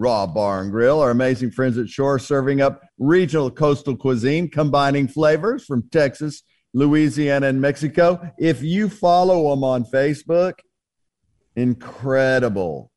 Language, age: English, 50-69